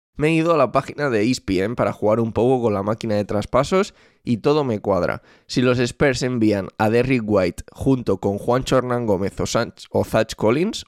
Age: 20-39